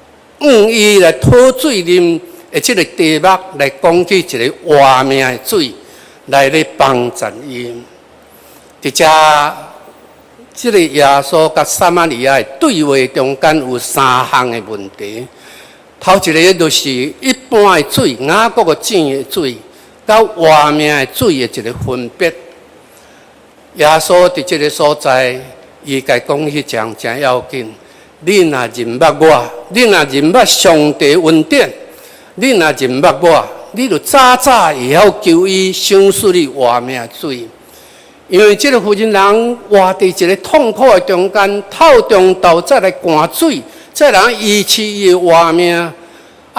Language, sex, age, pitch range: Chinese, male, 60-79, 150-225 Hz